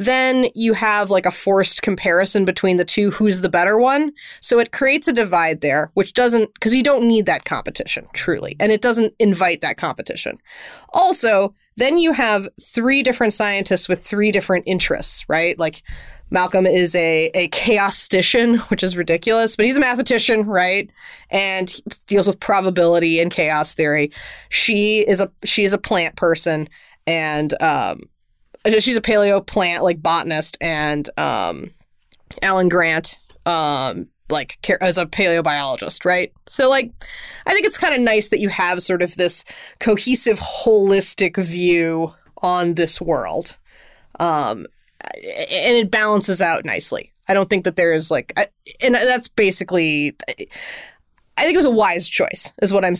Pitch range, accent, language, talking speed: 175-225 Hz, American, English, 160 wpm